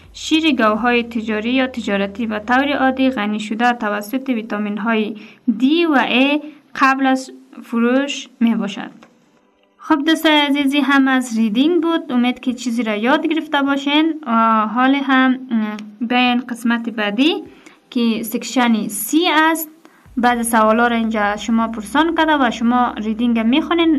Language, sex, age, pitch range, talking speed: English, female, 20-39, 225-285 Hz, 135 wpm